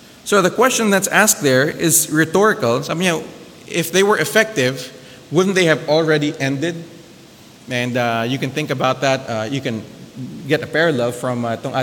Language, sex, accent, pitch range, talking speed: English, male, Filipino, 125-160 Hz, 180 wpm